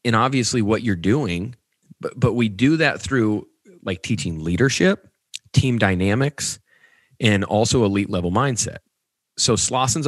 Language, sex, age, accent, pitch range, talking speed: English, male, 30-49, American, 95-120 Hz, 135 wpm